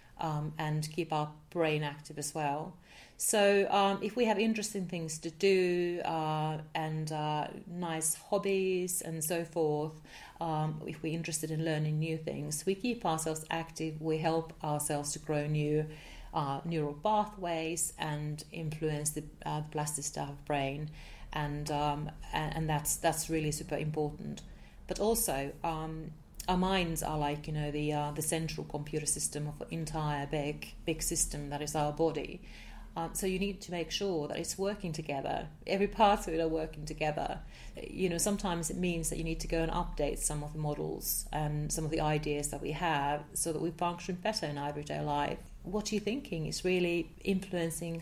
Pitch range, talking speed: 150-175 Hz, 180 wpm